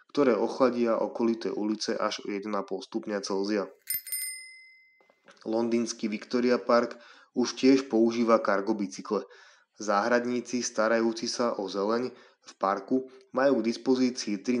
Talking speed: 115 wpm